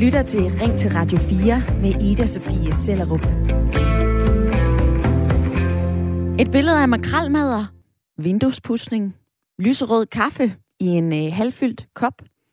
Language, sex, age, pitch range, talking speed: Danish, female, 20-39, 165-245 Hz, 100 wpm